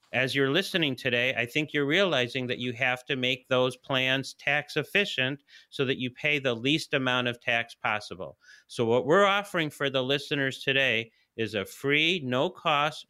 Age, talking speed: 40-59, 185 wpm